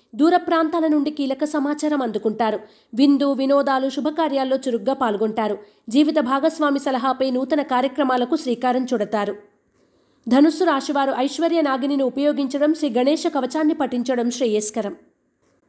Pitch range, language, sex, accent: 245-305 Hz, Telugu, female, native